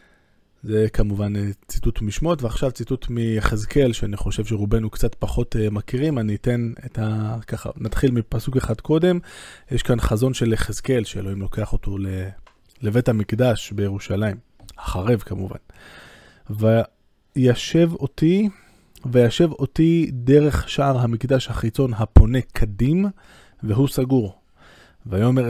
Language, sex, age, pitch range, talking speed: Hebrew, male, 20-39, 110-135 Hz, 115 wpm